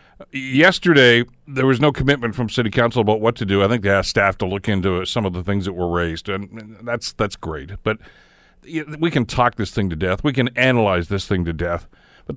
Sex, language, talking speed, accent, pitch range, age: male, English, 230 wpm, American, 100-135 Hz, 50-69